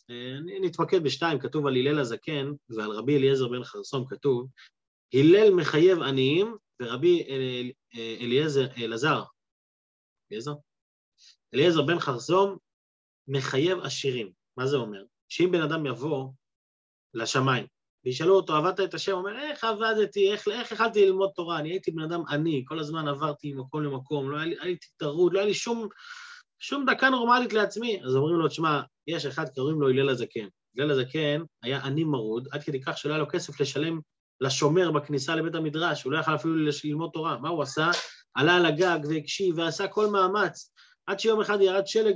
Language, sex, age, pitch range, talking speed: Hebrew, male, 30-49, 140-195 Hz, 160 wpm